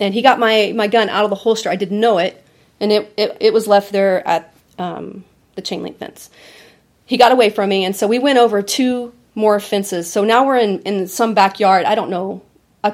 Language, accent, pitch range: English, American, 190-225 Hz